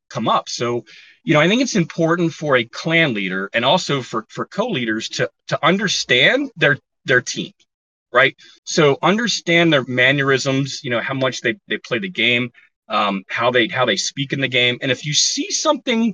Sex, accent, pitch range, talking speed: male, American, 125-170 Hz, 195 wpm